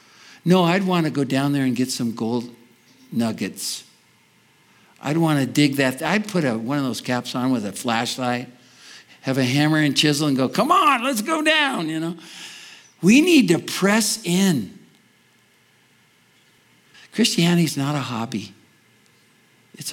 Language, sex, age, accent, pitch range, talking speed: English, male, 60-79, American, 130-175 Hz, 155 wpm